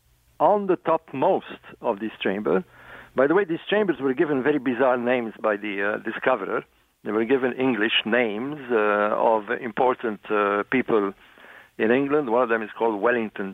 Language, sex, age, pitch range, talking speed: English, male, 50-69, 105-135 Hz, 170 wpm